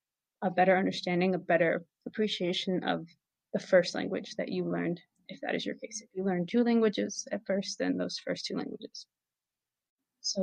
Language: English